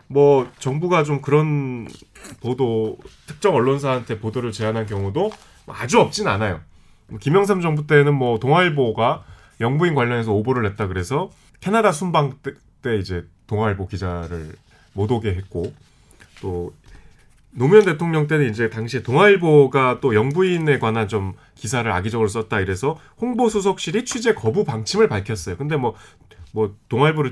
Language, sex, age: Korean, male, 30-49